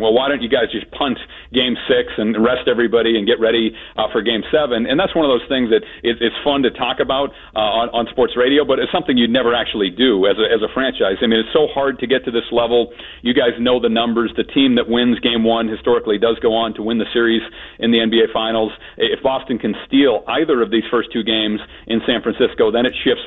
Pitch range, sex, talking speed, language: 115-130 Hz, male, 255 wpm, English